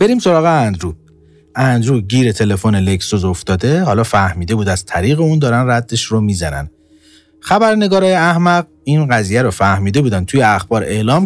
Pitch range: 95-155 Hz